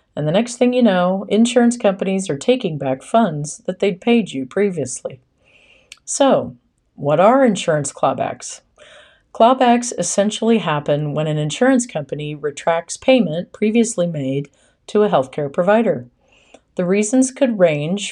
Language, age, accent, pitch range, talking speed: English, 40-59, American, 150-230 Hz, 135 wpm